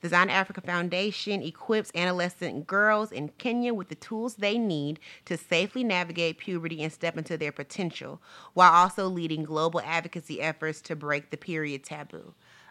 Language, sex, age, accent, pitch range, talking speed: English, female, 30-49, American, 160-195 Hz, 160 wpm